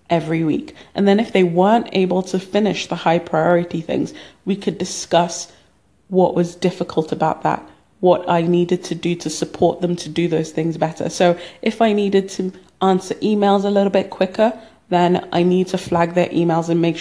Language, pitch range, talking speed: English, 170-200 Hz, 195 wpm